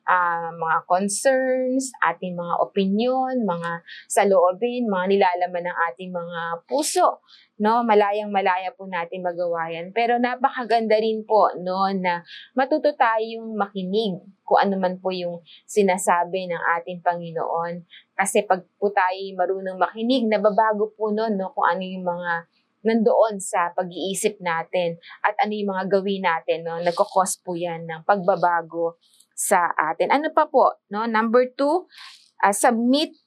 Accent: native